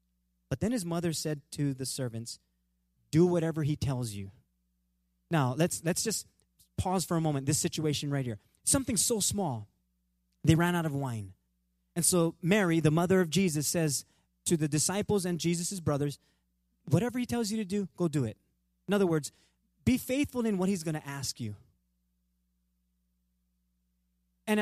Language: English